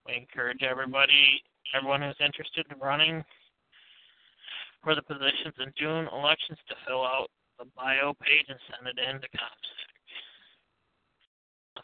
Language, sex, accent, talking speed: English, male, American, 135 wpm